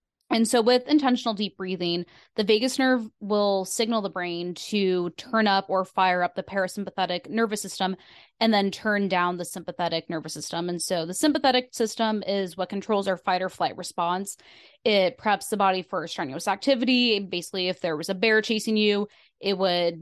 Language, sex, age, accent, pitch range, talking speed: English, female, 20-39, American, 180-225 Hz, 185 wpm